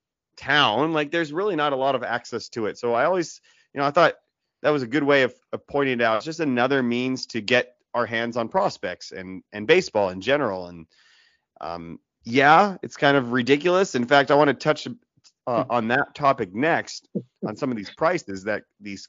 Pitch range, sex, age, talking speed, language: 120-150 Hz, male, 30-49, 215 wpm, English